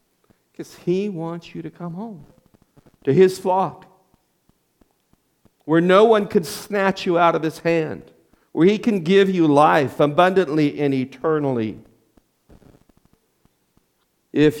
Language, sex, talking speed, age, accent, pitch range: English, male, 120 wpm, 50-69, American, 135-190 Hz